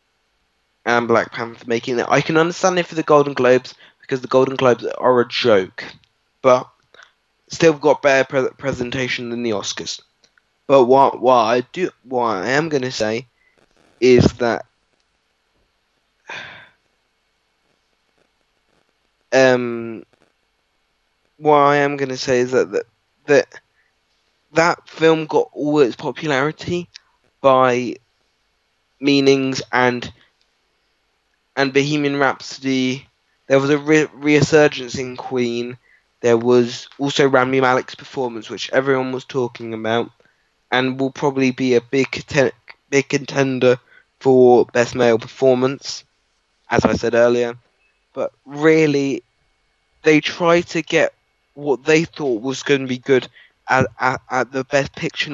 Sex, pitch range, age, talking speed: male, 125-145 Hz, 20-39, 130 wpm